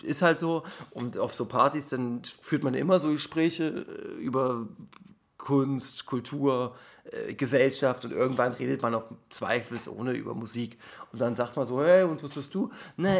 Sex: male